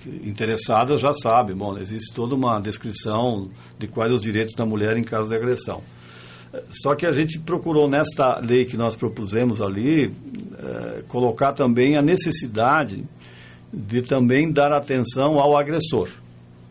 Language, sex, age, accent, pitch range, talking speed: Portuguese, male, 60-79, Brazilian, 105-145 Hz, 140 wpm